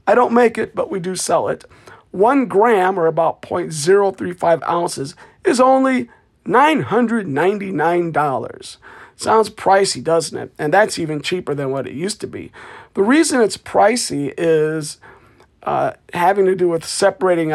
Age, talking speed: 40-59, 145 wpm